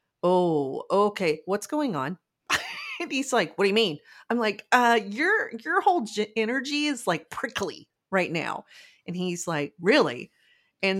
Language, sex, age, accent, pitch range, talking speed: English, female, 30-49, American, 175-235 Hz, 155 wpm